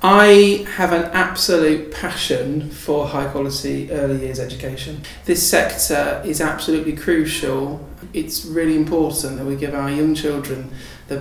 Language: English